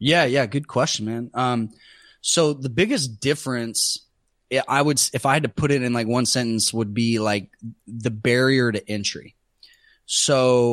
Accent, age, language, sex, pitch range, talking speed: American, 20-39, English, male, 110-135 Hz, 170 wpm